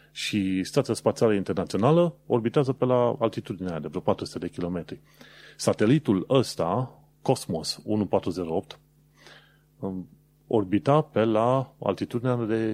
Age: 30-49